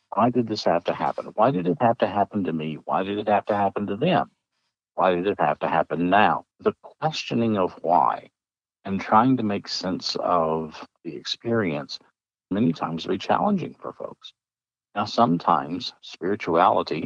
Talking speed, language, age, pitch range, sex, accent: 175 wpm, English, 60-79, 85-105 Hz, male, American